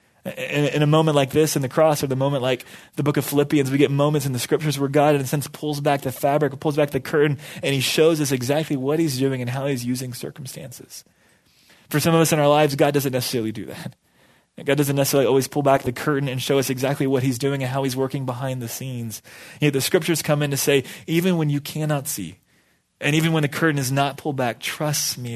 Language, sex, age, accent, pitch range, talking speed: English, male, 20-39, American, 125-150 Hz, 245 wpm